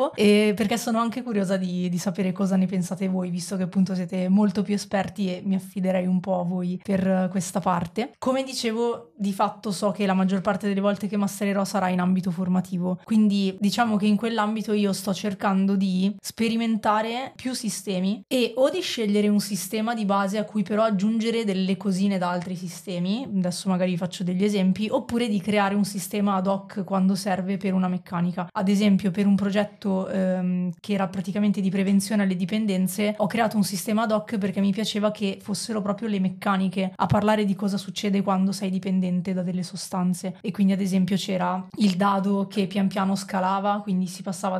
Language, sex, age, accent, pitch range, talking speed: Italian, female, 20-39, native, 185-210 Hz, 190 wpm